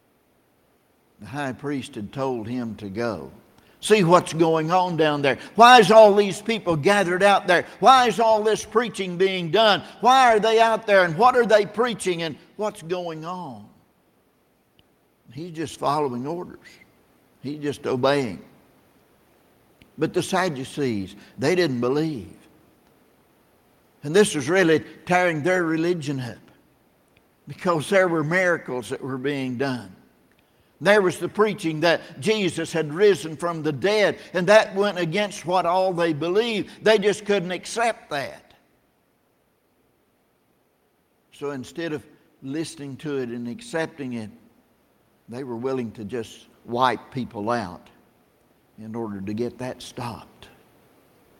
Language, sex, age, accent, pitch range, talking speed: English, male, 60-79, American, 130-190 Hz, 140 wpm